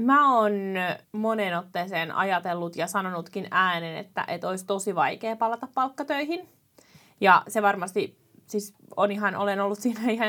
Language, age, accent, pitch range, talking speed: Finnish, 20-39, native, 180-215 Hz, 145 wpm